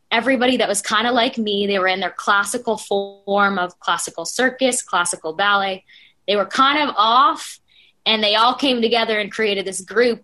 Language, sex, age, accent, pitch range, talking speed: English, female, 10-29, American, 180-225 Hz, 190 wpm